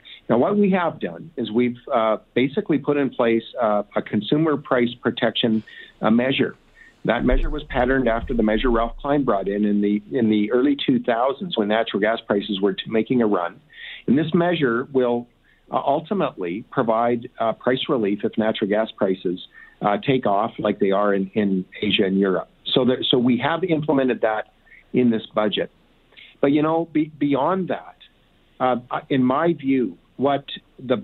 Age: 50-69